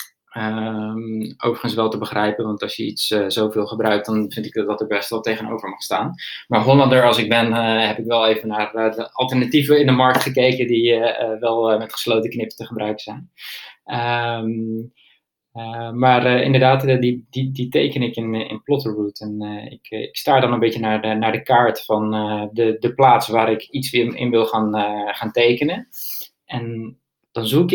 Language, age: Dutch, 20-39